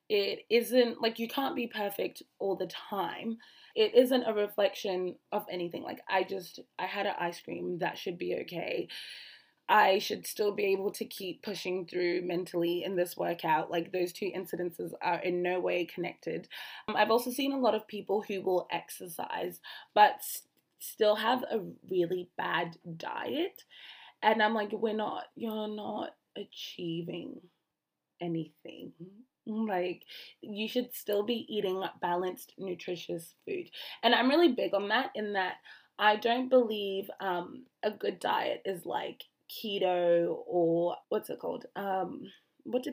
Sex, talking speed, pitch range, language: female, 155 wpm, 175-225 Hz, English